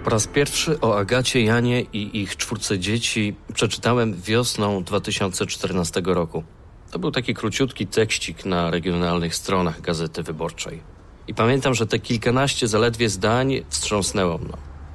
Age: 40-59